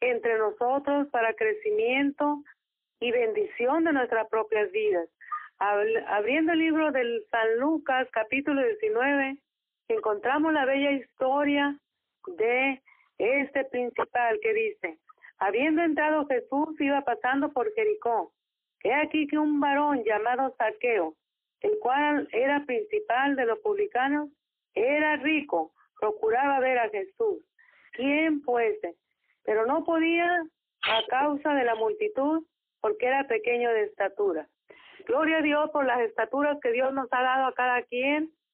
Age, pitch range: 50-69, 240-330 Hz